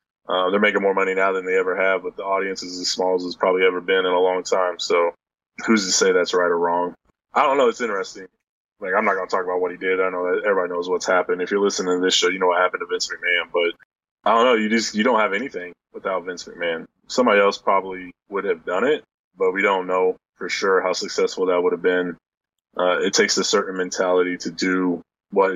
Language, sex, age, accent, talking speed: English, male, 20-39, American, 255 wpm